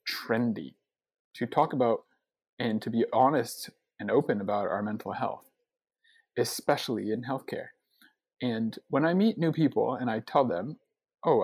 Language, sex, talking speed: English, male, 145 wpm